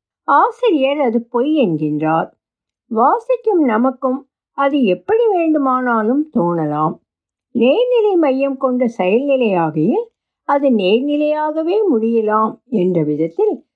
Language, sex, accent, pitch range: Tamil, female, native, 215-320 Hz